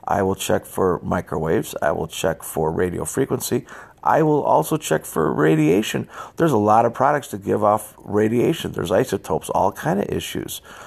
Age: 40-59